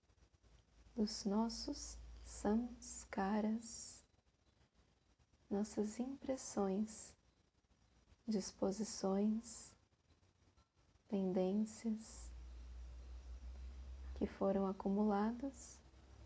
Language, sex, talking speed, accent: Portuguese, female, 35 wpm, Brazilian